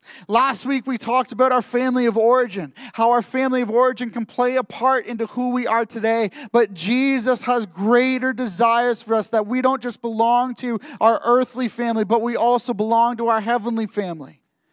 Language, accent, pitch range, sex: English, American, 215-250 Hz, male